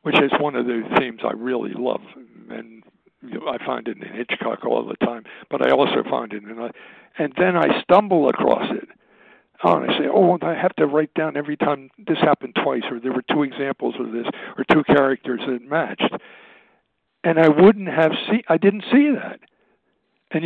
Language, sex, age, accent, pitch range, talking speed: English, male, 60-79, American, 125-160 Hz, 195 wpm